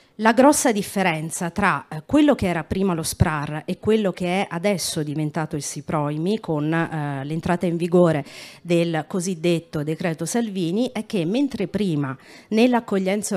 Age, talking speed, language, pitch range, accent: 40-59, 145 wpm, Italian, 165-210 Hz, native